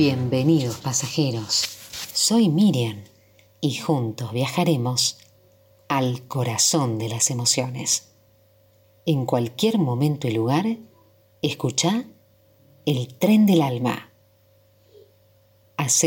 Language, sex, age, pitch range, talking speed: Spanish, female, 40-59, 110-155 Hz, 85 wpm